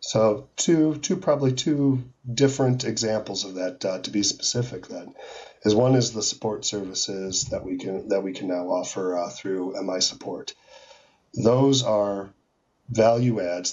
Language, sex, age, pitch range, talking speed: English, male, 40-59, 100-120 Hz, 155 wpm